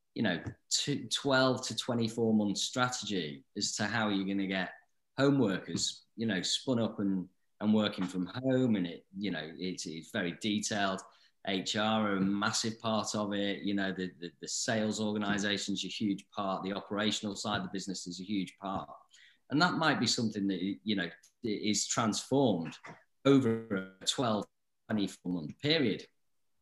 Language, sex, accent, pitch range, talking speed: English, male, British, 95-115 Hz, 175 wpm